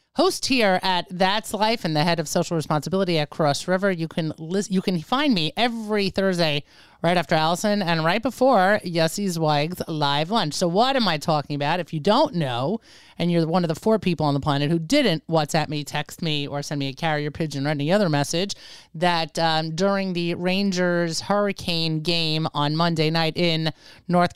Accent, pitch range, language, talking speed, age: American, 155-190 Hz, English, 195 wpm, 30-49